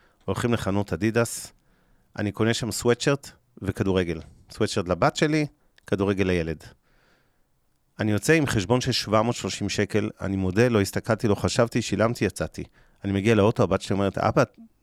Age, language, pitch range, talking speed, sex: 40-59, Hebrew, 100-125 Hz, 140 wpm, male